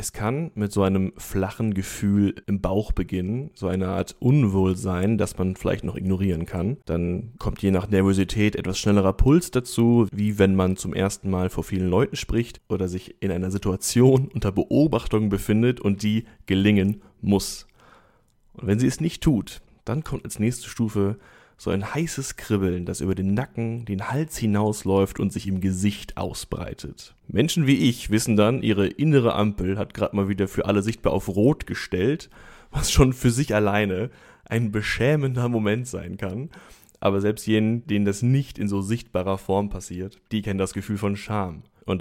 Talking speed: 175 wpm